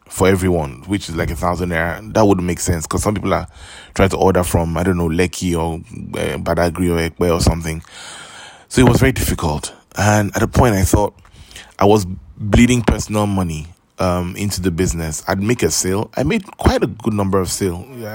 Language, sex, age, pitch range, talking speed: English, male, 20-39, 85-100 Hz, 210 wpm